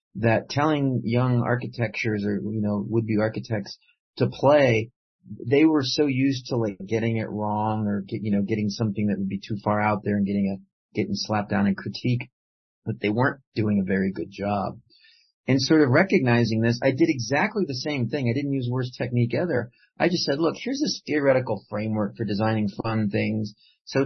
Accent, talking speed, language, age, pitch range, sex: American, 200 wpm, English, 40-59, 105-140 Hz, male